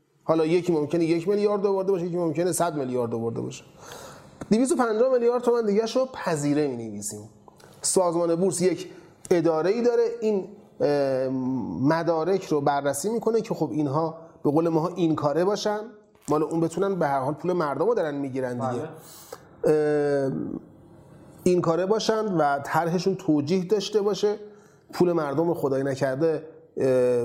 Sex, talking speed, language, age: male, 140 wpm, Persian, 30-49